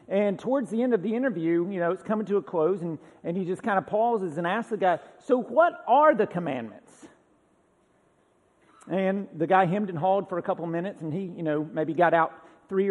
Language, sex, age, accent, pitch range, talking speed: English, male, 50-69, American, 170-220 Hz, 225 wpm